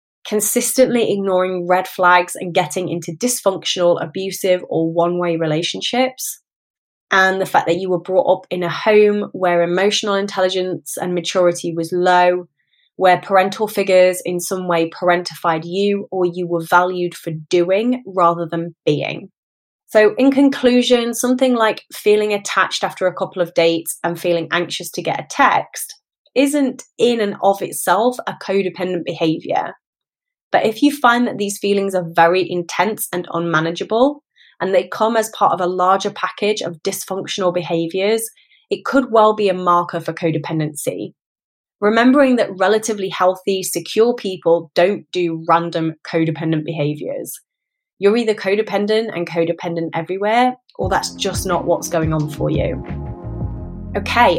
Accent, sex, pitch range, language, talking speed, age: British, female, 170-215 Hz, English, 145 wpm, 20-39